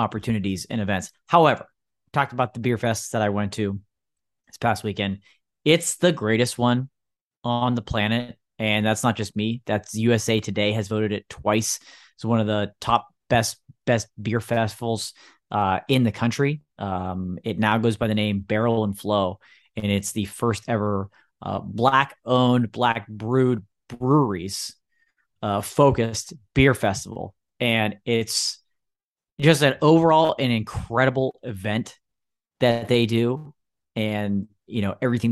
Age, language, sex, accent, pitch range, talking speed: 30-49, English, male, American, 105-125 Hz, 150 wpm